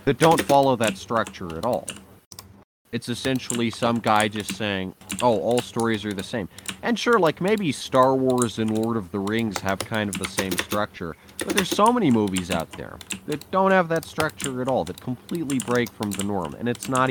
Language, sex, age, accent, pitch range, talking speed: English, male, 30-49, American, 95-130 Hz, 205 wpm